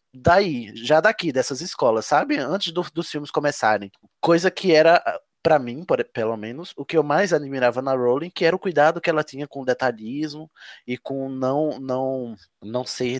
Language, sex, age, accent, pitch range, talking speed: Portuguese, male, 20-39, Brazilian, 115-155 Hz, 185 wpm